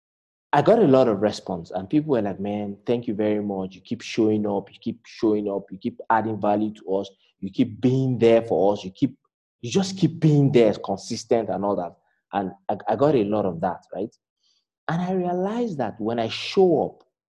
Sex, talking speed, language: male, 220 wpm, English